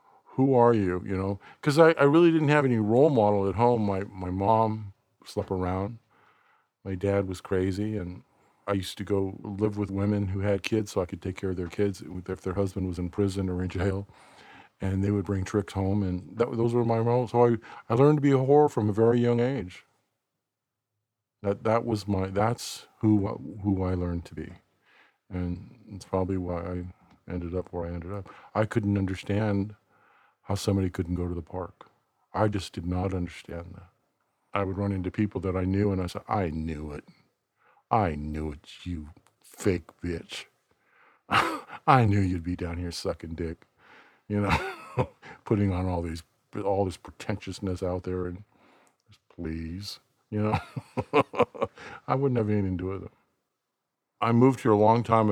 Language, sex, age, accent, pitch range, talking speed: English, male, 50-69, American, 90-110 Hz, 190 wpm